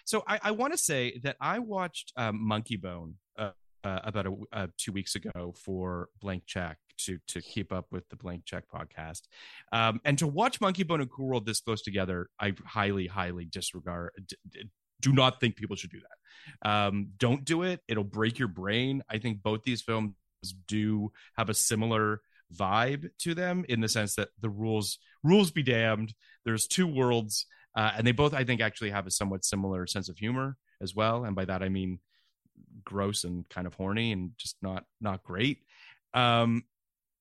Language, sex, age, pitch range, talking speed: English, male, 30-49, 100-135 Hz, 195 wpm